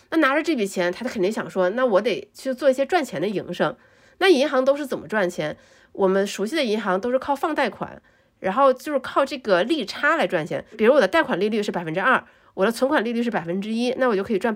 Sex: female